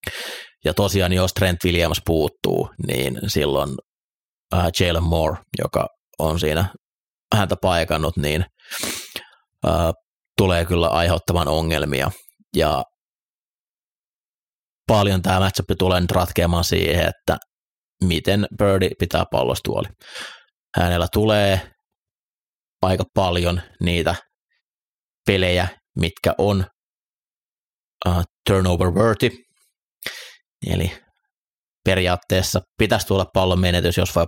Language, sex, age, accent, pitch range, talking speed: Finnish, male, 30-49, native, 85-95 Hz, 95 wpm